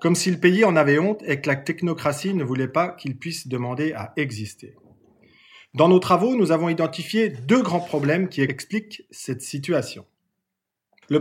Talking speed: 175 wpm